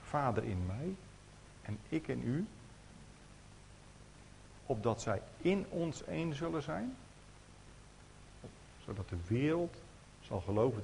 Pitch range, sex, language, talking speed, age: 105-130 Hz, male, Dutch, 105 wpm, 50-69